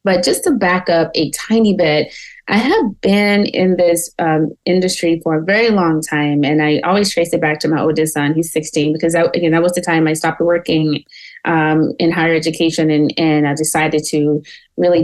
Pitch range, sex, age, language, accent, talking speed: 155-190 Hz, female, 30-49, English, American, 205 wpm